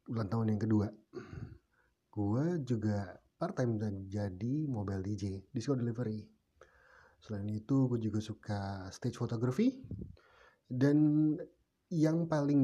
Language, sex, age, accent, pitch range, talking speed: English, male, 30-49, Indonesian, 105-130 Hz, 110 wpm